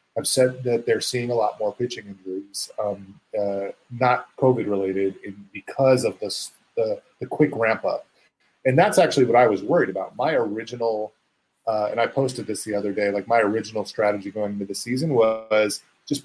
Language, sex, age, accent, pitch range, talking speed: English, male, 30-49, American, 100-130 Hz, 175 wpm